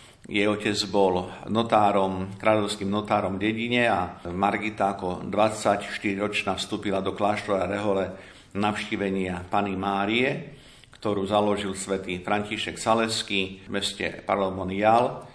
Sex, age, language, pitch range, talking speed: male, 50-69, Slovak, 95-110 Hz, 105 wpm